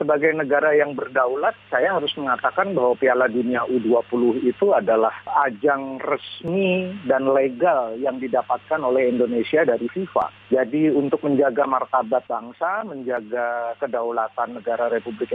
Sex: male